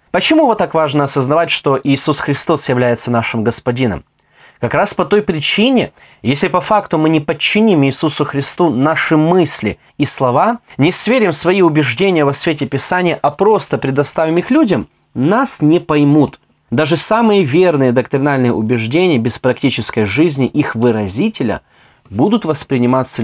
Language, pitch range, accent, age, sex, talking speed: Russian, 130-180 Hz, native, 30-49, male, 140 wpm